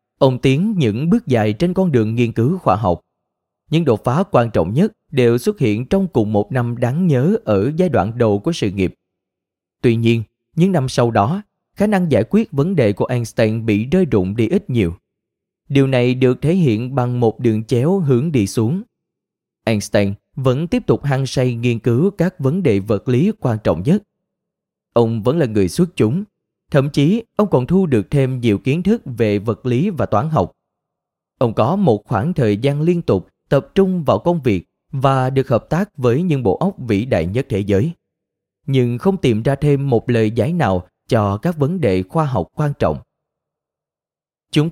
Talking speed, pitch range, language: 200 wpm, 110-165 Hz, Vietnamese